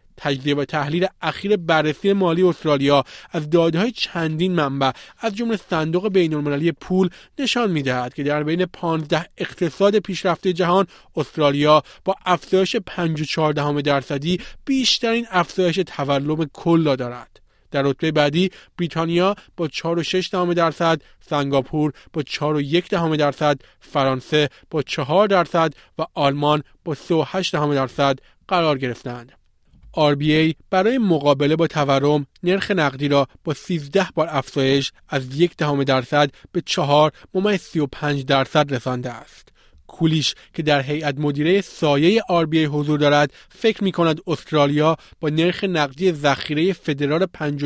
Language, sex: Persian, male